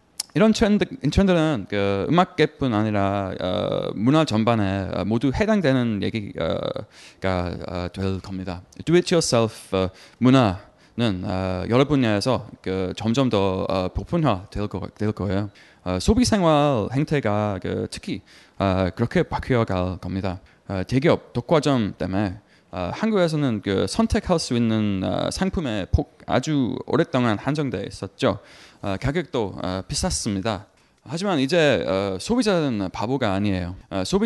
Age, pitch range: 20-39, 95-130 Hz